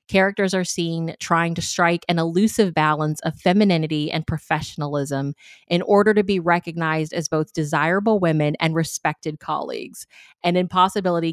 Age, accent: 30-49, American